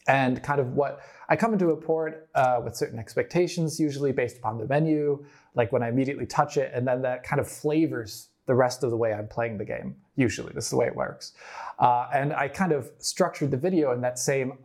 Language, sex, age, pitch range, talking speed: English, male, 20-39, 125-155 Hz, 235 wpm